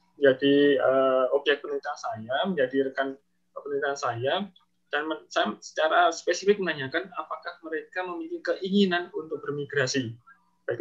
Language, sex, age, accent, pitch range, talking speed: Indonesian, male, 20-39, native, 140-185 Hz, 110 wpm